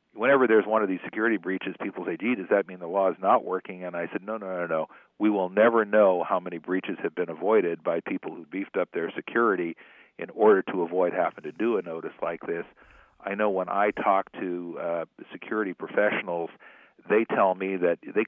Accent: American